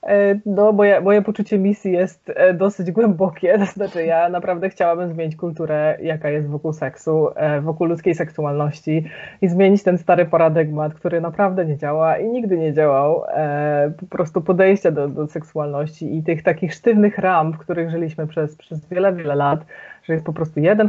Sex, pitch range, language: female, 150-185 Hz, Polish